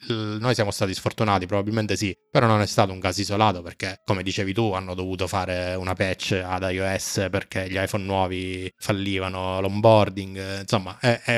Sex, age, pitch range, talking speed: male, 20-39, 95-105 Hz, 175 wpm